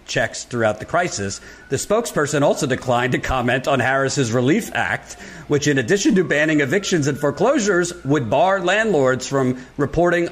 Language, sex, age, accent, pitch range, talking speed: English, male, 50-69, American, 130-175 Hz, 155 wpm